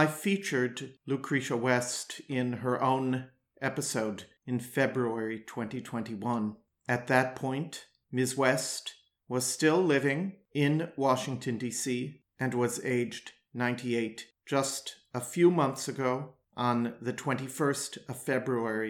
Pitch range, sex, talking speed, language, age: 120-140 Hz, male, 115 wpm, English, 50-69